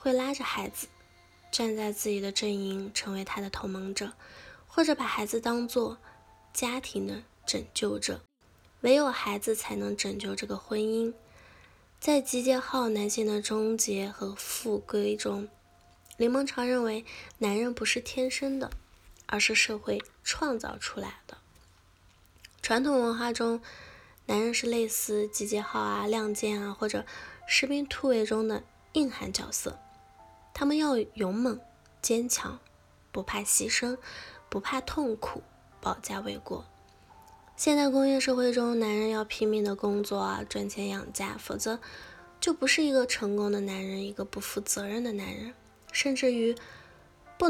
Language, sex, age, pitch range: Chinese, female, 10-29, 195-250 Hz